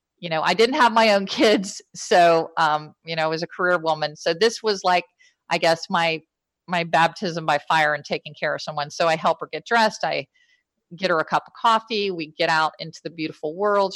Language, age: English, 50-69